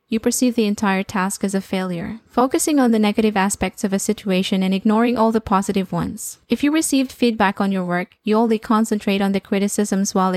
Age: 10-29